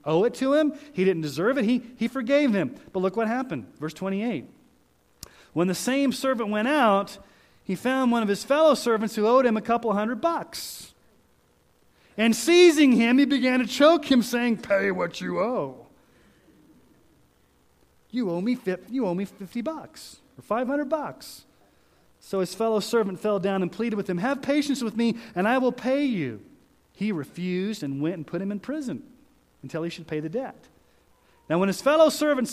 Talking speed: 185 wpm